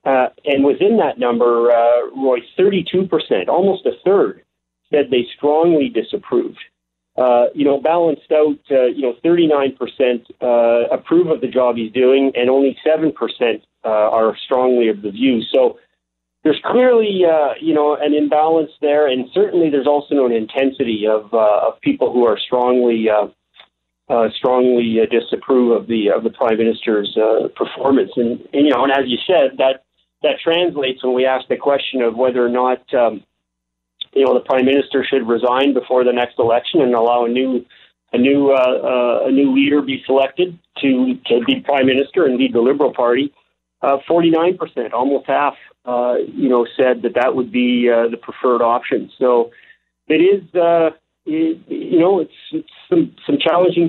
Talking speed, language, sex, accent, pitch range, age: 180 wpm, English, male, American, 120-155 Hz, 40-59